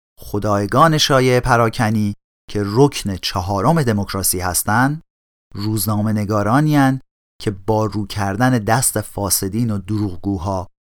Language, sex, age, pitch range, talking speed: Persian, male, 40-59, 100-135 Hz, 95 wpm